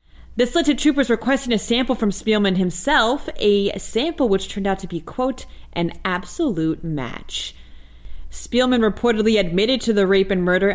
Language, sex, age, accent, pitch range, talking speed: English, female, 30-49, American, 170-225 Hz, 155 wpm